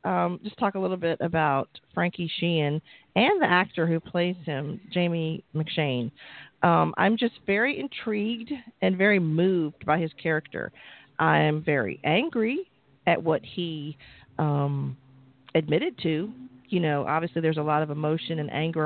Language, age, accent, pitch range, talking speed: English, 40-59, American, 150-190 Hz, 150 wpm